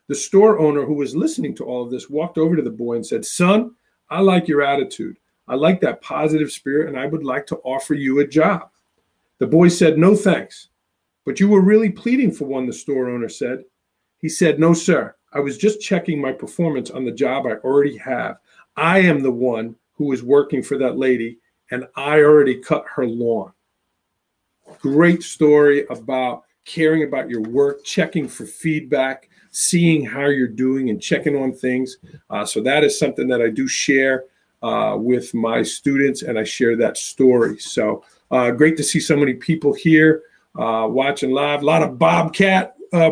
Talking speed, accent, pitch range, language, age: 190 wpm, American, 130-165 Hz, English, 40-59